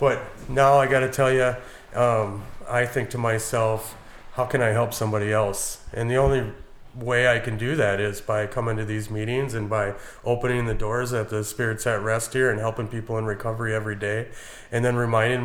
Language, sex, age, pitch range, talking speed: English, male, 30-49, 105-120 Hz, 205 wpm